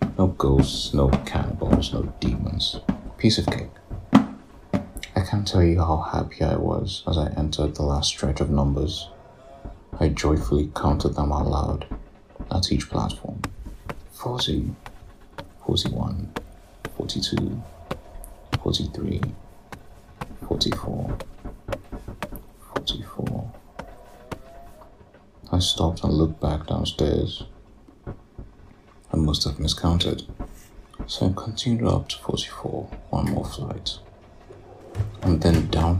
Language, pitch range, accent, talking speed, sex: English, 80-100 Hz, British, 100 wpm, male